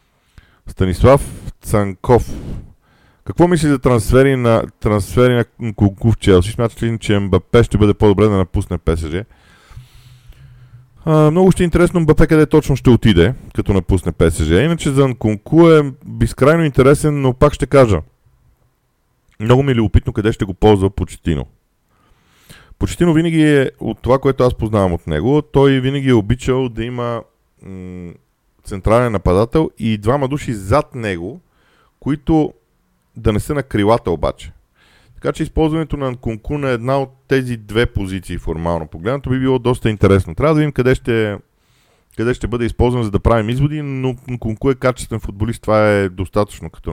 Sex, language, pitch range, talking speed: male, Bulgarian, 100-135 Hz, 155 wpm